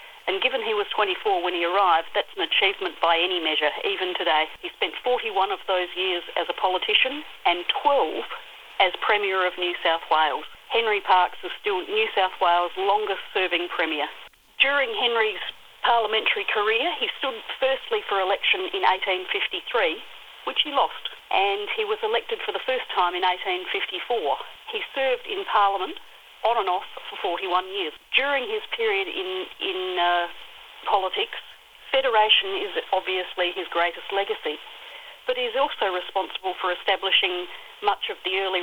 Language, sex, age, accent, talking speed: English, female, 40-59, Australian, 155 wpm